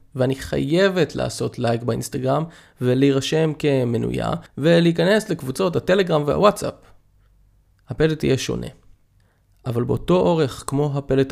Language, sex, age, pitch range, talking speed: Hebrew, male, 20-39, 110-140 Hz, 100 wpm